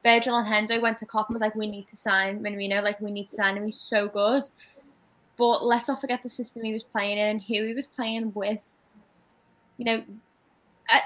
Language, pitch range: English, 225-260 Hz